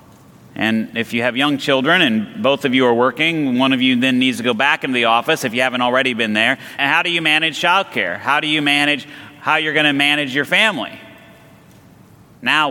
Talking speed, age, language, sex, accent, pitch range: 220 wpm, 30-49, English, male, American, 125-160 Hz